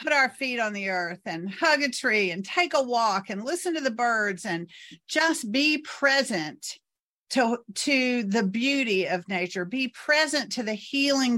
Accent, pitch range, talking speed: American, 200-255 Hz, 180 wpm